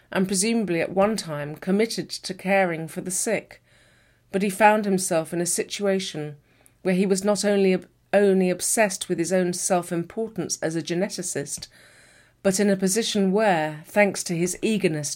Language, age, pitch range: English, 40-59, 165-200 Hz